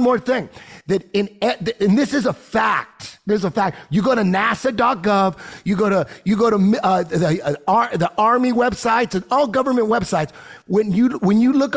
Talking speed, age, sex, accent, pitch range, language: 200 wpm, 30-49, male, American, 205-260 Hz, English